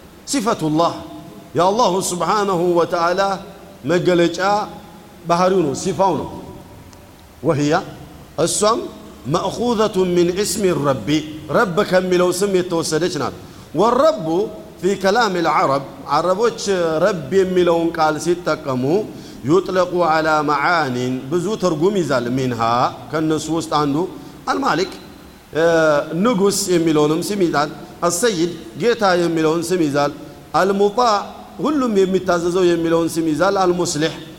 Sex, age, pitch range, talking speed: male, 50-69, 155-190 Hz, 90 wpm